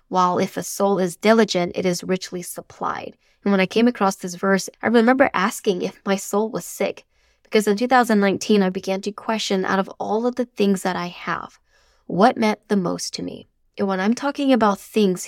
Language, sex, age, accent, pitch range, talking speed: English, female, 10-29, American, 185-210 Hz, 210 wpm